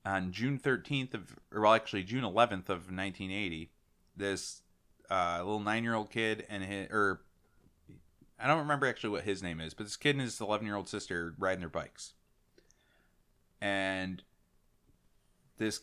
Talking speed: 150 wpm